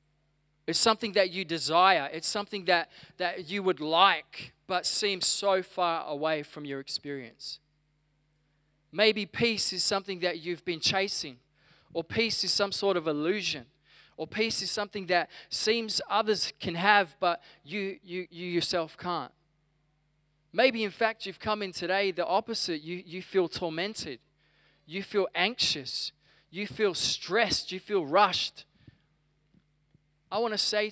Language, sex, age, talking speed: English, male, 20-39, 150 wpm